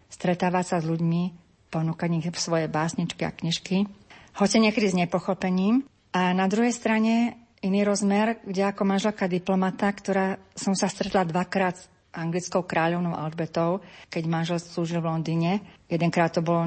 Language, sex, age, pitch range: Slovak, female, 40-59, 170-195 Hz